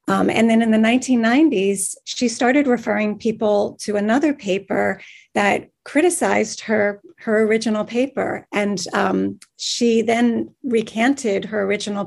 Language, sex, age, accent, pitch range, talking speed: English, female, 40-59, American, 200-245 Hz, 130 wpm